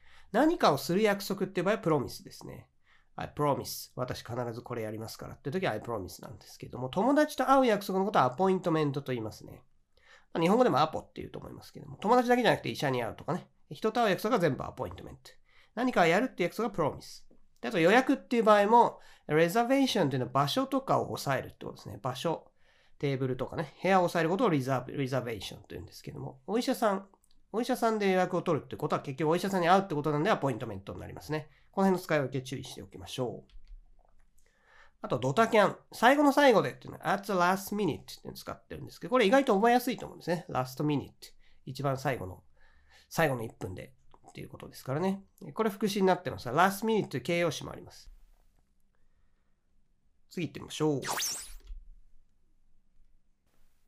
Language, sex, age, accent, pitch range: Japanese, male, 40-59, native, 125-195 Hz